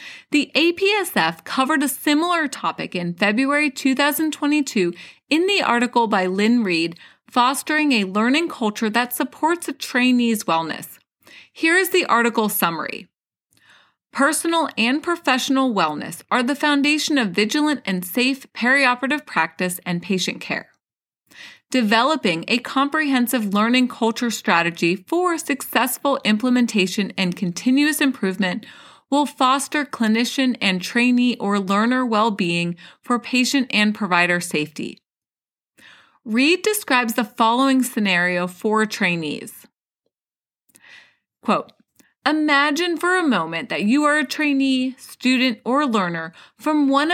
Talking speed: 115 wpm